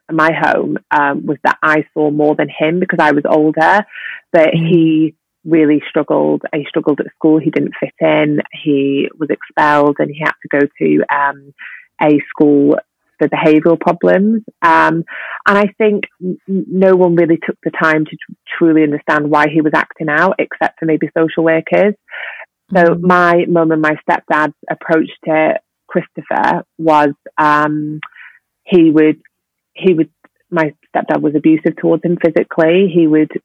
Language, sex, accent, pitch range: English, female, British, 150-170 Hz